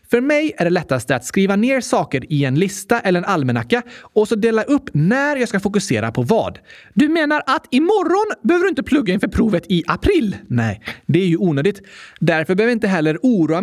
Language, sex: Swedish, male